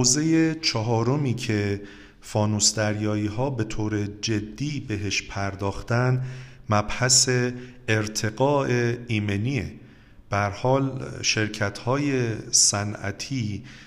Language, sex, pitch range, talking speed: Persian, male, 105-130 Hz, 80 wpm